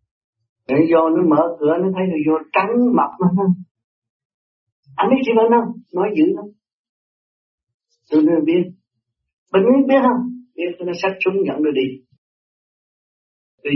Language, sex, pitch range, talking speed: Vietnamese, male, 125-185 Hz, 155 wpm